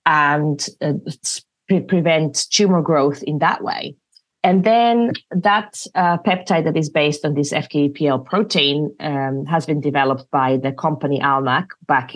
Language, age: English, 30-49